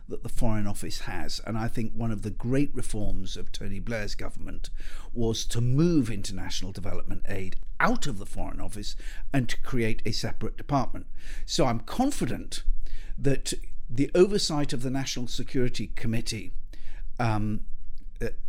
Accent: British